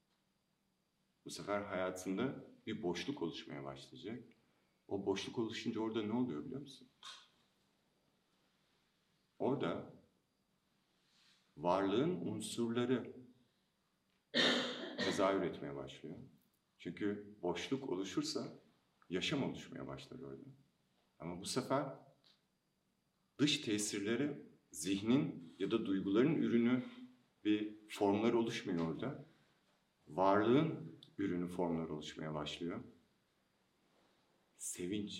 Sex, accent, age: male, native, 50-69